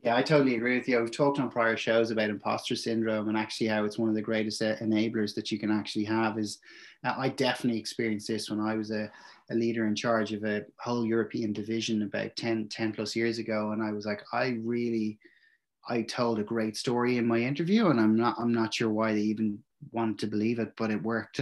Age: 30-49